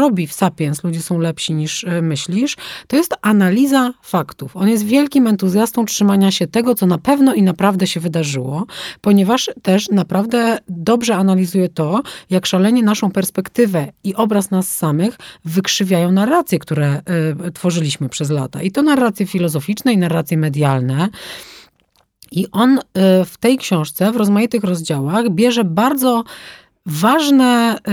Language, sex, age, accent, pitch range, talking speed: Polish, female, 30-49, native, 175-215 Hz, 140 wpm